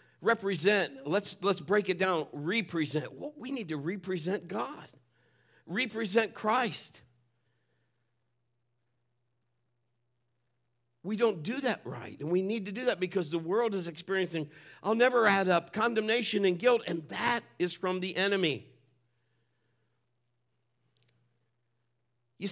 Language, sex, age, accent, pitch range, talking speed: English, male, 50-69, American, 120-200 Hz, 120 wpm